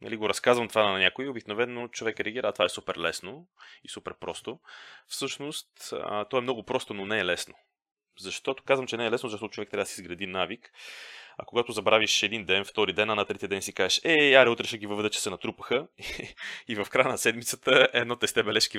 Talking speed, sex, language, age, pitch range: 235 wpm, male, Bulgarian, 30-49, 95-120 Hz